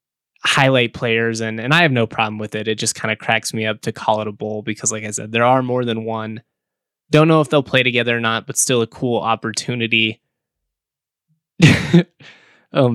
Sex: male